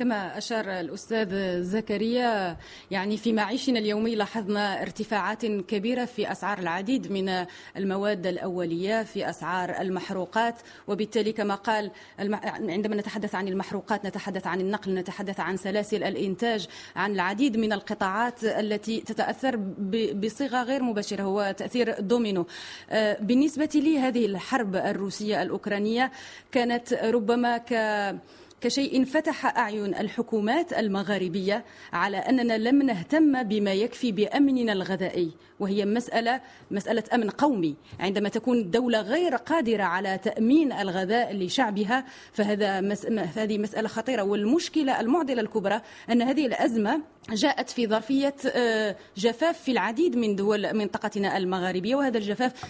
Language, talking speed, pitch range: English, 115 wpm, 200-245 Hz